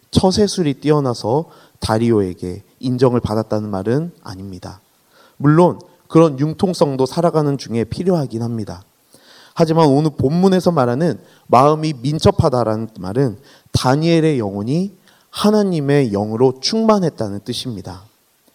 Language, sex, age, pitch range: Korean, male, 30-49, 110-150 Hz